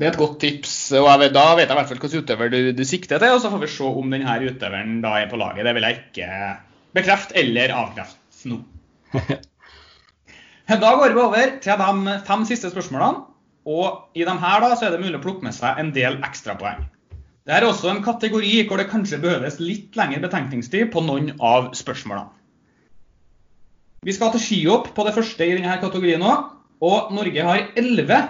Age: 20-39